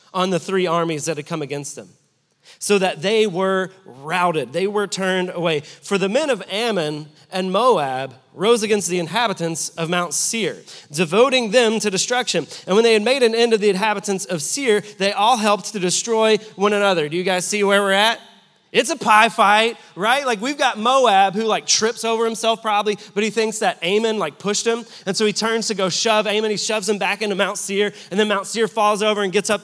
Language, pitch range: English, 185-225 Hz